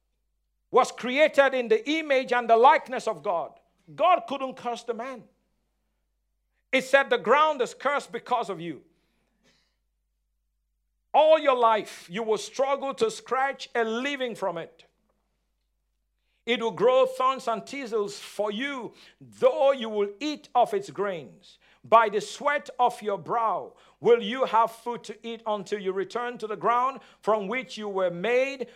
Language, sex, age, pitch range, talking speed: English, male, 50-69, 200-255 Hz, 155 wpm